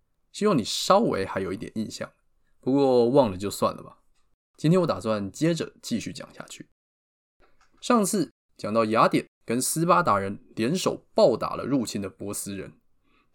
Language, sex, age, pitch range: Chinese, male, 20-39, 105-160 Hz